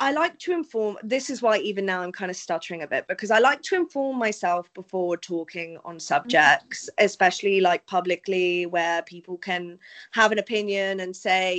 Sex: female